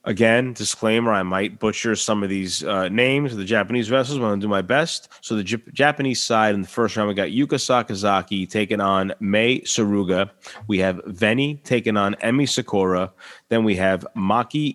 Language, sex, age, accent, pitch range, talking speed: English, male, 30-49, American, 100-120 Hz, 200 wpm